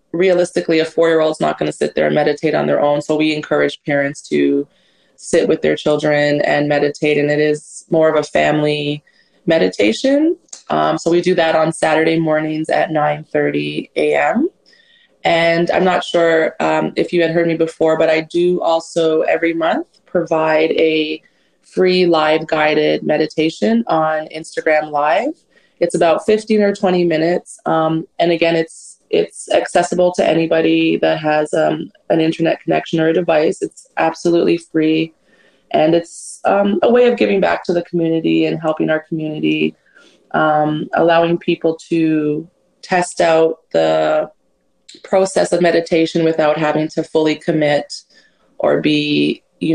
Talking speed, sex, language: 155 wpm, female, English